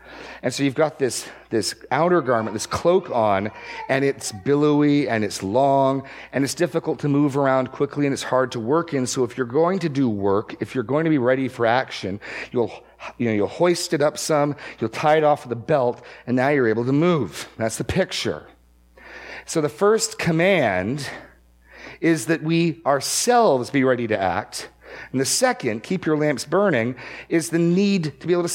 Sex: male